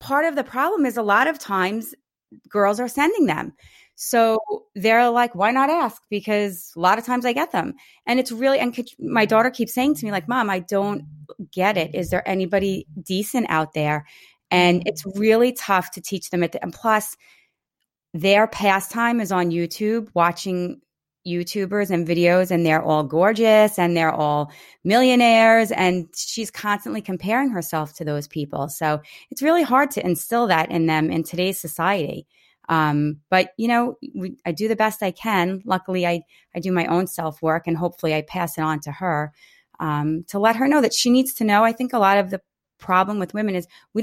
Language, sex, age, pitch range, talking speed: English, female, 30-49, 175-230 Hz, 200 wpm